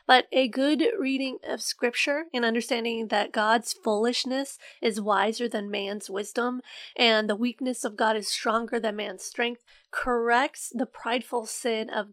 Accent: American